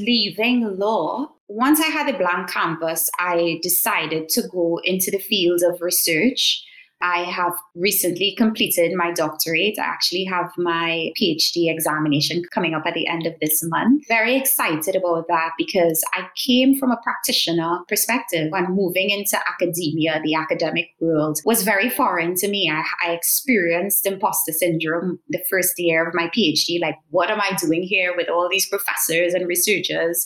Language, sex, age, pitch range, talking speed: English, female, 20-39, 170-220 Hz, 165 wpm